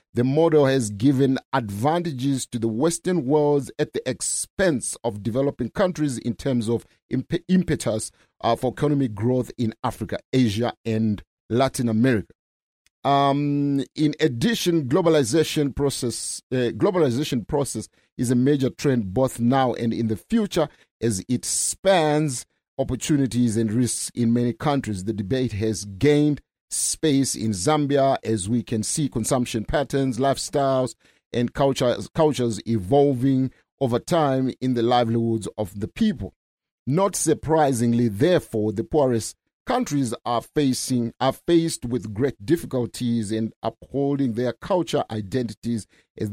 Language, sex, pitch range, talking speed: English, male, 115-145 Hz, 130 wpm